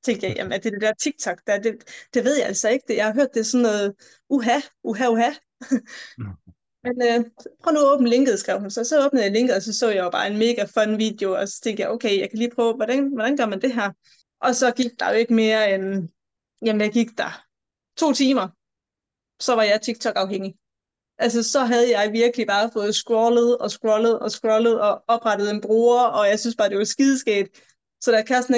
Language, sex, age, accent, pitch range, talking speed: Danish, female, 20-39, native, 210-265 Hz, 225 wpm